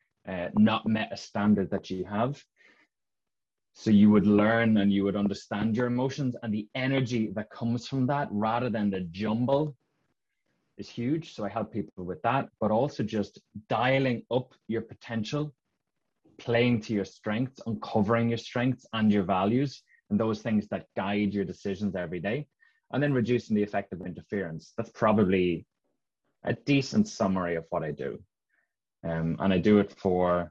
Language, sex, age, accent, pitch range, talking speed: English, male, 20-39, Irish, 95-125 Hz, 165 wpm